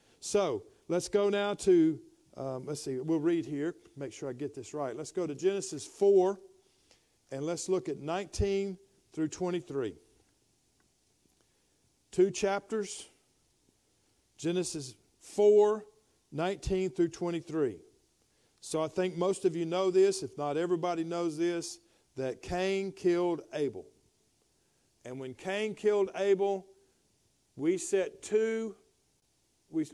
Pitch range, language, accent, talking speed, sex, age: 165-205 Hz, English, American, 125 wpm, male, 50-69